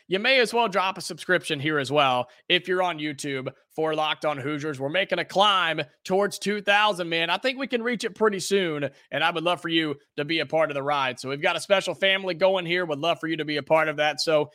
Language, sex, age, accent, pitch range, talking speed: English, male, 30-49, American, 155-205 Hz, 270 wpm